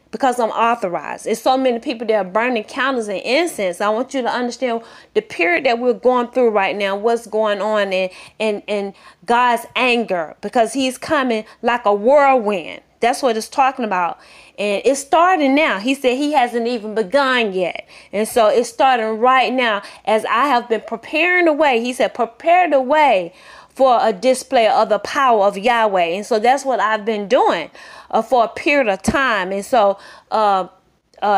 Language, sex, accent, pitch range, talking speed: English, female, American, 205-260 Hz, 185 wpm